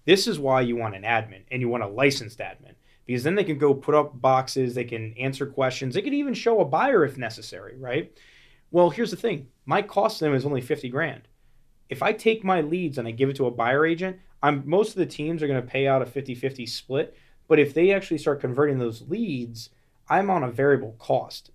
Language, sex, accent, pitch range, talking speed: English, male, American, 120-150 Hz, 235 wpm